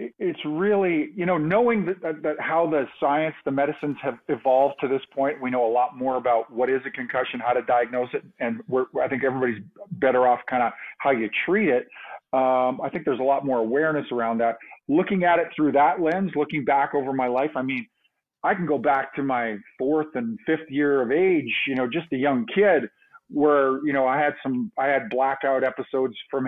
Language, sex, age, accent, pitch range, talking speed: English, male, 40-59, American, 130-155 Hz, 220 wpm